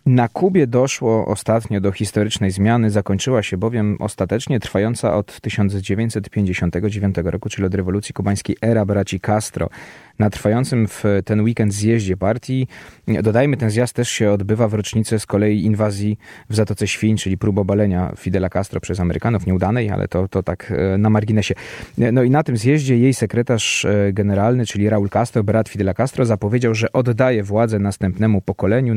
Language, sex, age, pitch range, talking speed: Polish, male, 20-39, 105-125 Hz, 160 wpm